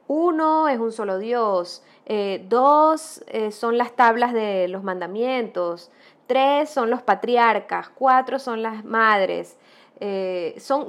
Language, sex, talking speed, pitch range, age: Spanish, female, 130 wpm, 215-295 Hz, 20-39